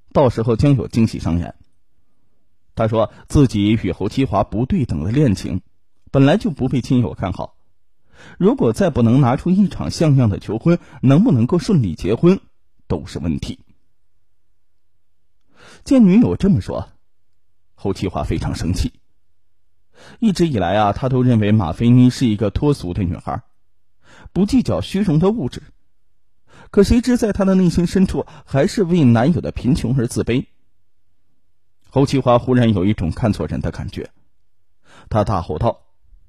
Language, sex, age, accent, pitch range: Chinese, male, 20-39, native, 90-140 Hz